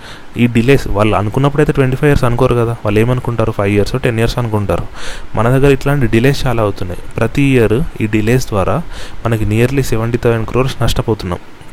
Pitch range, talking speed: 105-130 Hz, 175 wpm